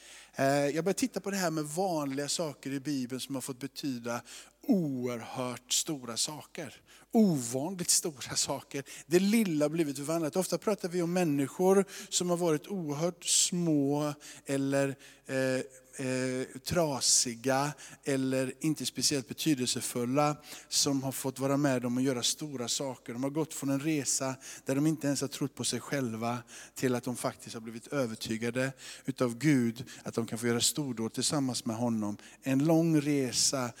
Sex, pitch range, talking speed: male, 130-155 Hz, 160 wpm